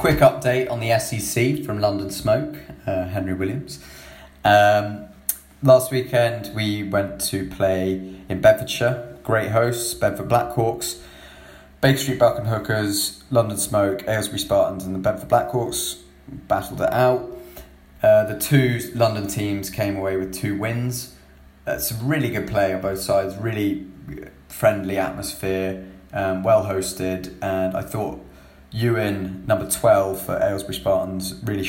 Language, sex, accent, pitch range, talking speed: English, male, British, 95-110 Hz, 140 wpm